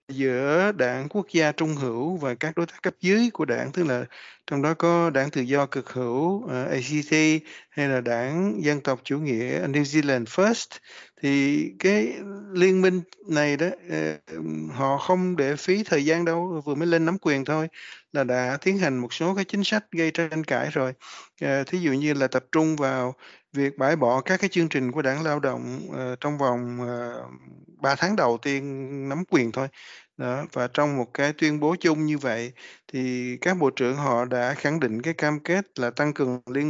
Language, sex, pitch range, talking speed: Vietnamese, male, 130-165 Hz, 200 wpm